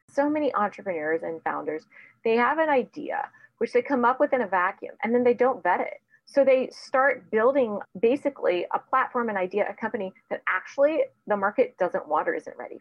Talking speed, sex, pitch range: 200 wpm, female, 180-275 Hz